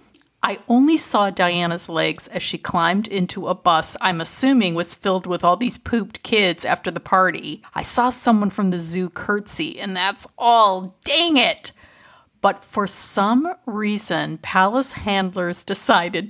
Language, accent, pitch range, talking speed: English, American, 185-250 Hz, 155 wpm